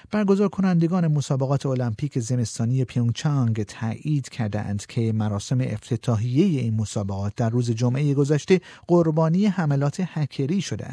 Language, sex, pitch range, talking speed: Persian, male, 120-150 Hz, 115 wpm